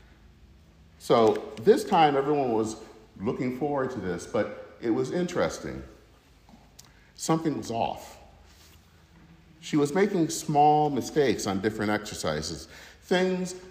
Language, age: English, 50-69